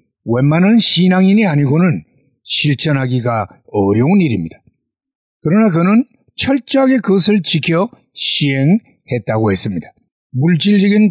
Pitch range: 135-200 Hz